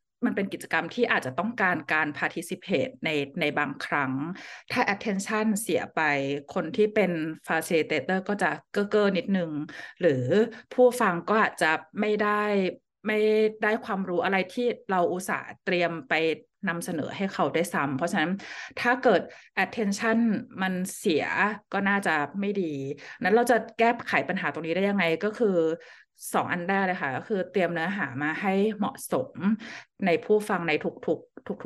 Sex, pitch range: female, 170-215 Hz